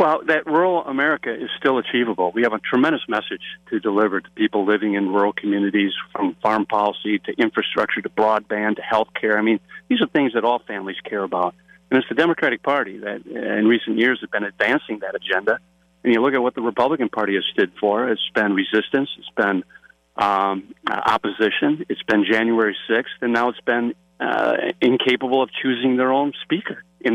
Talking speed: 195 wpm